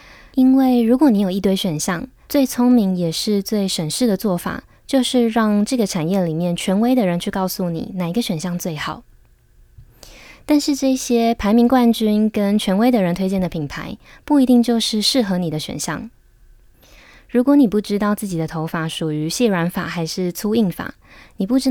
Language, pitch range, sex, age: Chinese, 175-235 Hz, female, 20-39